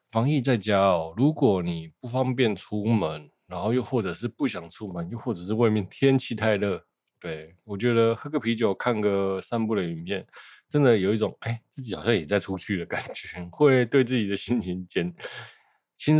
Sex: male